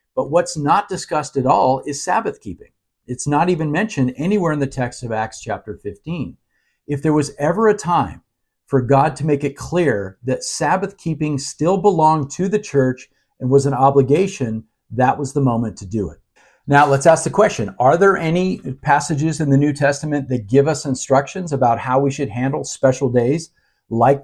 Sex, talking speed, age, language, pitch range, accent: male, 190 wpm, 50-69, English, 130-160 Hz, American